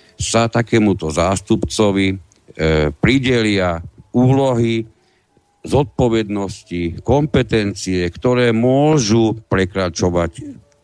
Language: Slovak